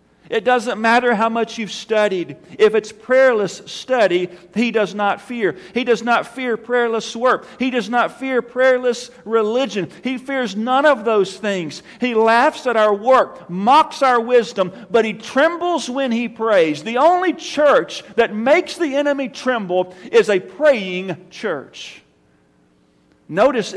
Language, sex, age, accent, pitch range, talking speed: English, male, 40-59, American, 175-245 Hz, 150 wpm